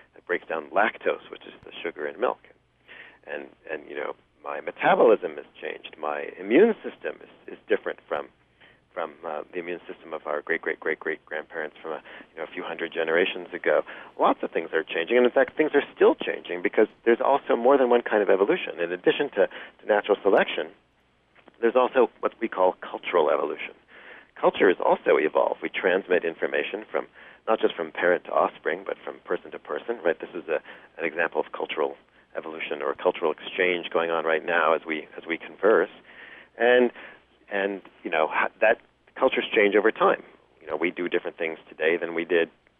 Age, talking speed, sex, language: 40-59, 190 wpm, male, English